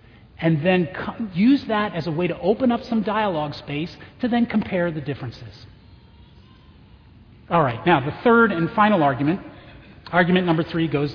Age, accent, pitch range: 40-59, American, 155-220 Hz